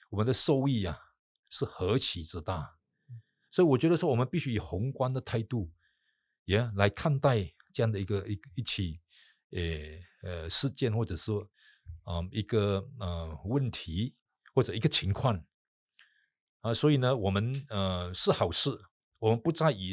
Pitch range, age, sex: 100-140 Hz, 50-69, male